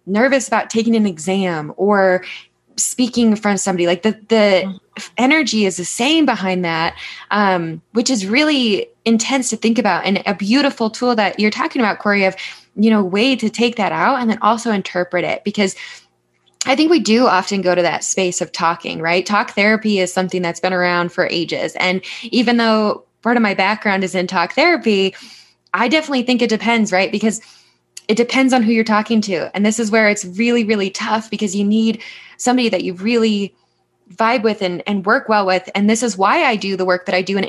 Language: English